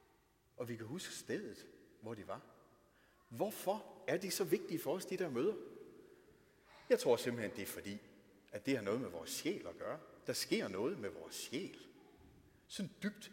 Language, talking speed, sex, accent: Danish, 185 wpm, male, native